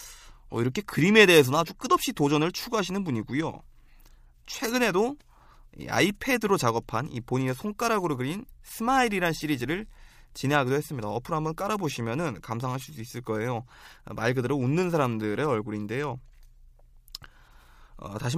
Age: 20-39